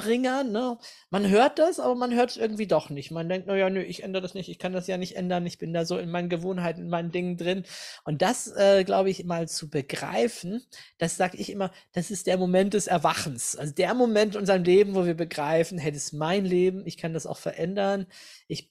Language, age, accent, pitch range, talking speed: German, 20-39, German, 175-220 Hz, 240 wpm